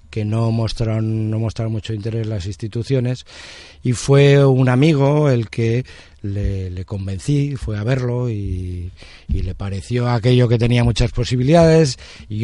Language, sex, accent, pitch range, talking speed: Spanish, male, Spanish, 100-140 Hz, 155 wpm